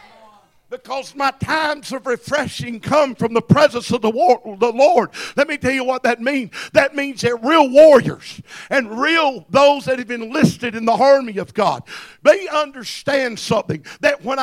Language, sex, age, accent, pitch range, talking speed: English, male, 50-69, American, 195-280 Hz, 175 wpm